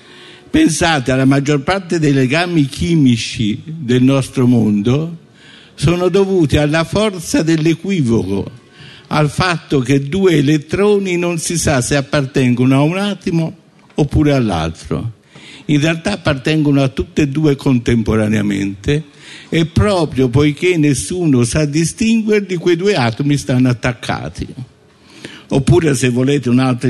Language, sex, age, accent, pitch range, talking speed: Italian, male, 50-69, native, 130-175 Hz, 120 wpm